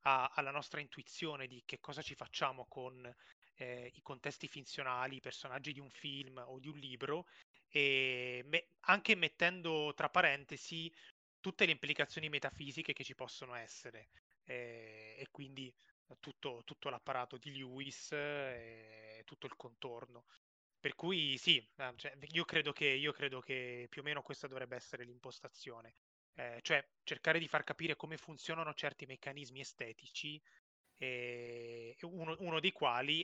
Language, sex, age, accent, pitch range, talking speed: Italian, male, 20-39, native, 130-155 Hz, 145 wpm